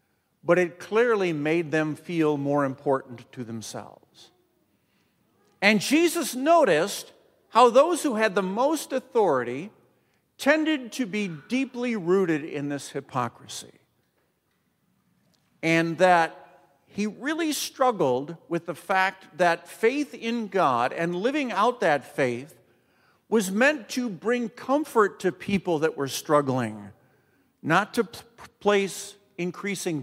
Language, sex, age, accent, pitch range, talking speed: English, male, 50-69, American, 155-230 Hz, 120 wpm